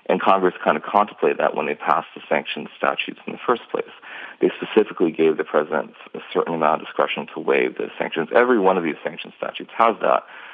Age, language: 40-59, English